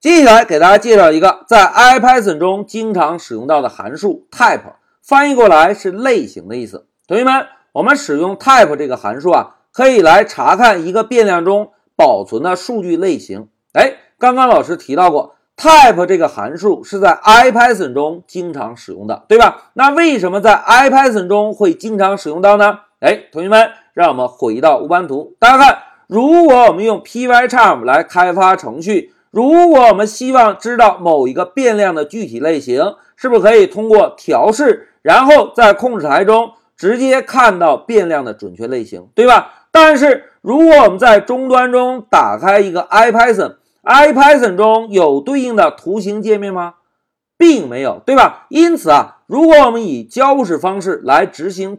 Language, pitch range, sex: Chinese, 200-275 Hz, male